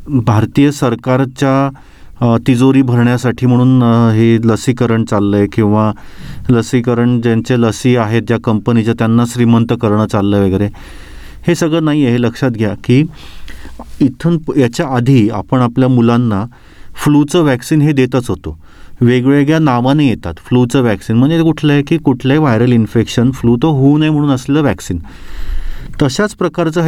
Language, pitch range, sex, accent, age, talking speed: Marathi, 110-140 Hz, male, native, 30-49, 105 wpm